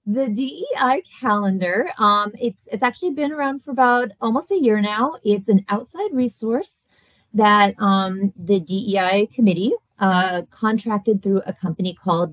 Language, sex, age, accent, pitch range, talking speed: English, female, 30-49, American, 175-220 Hz, 145 wpm